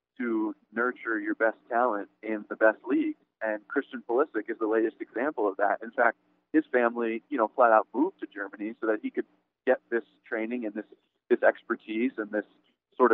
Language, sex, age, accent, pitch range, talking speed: English, male, 20-39, American, 105-135 Hz, 195 wpm